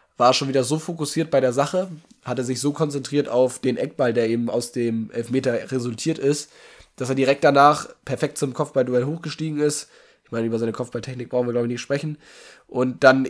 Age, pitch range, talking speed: 10-29, 120-145 Hz, 200 wpm